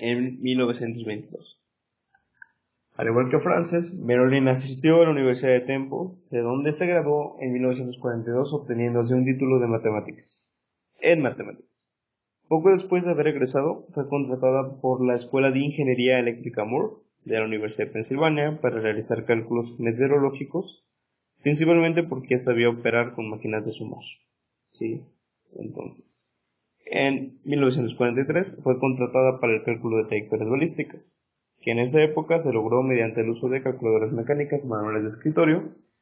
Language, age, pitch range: Spanish, 20-39, 120-145 Hz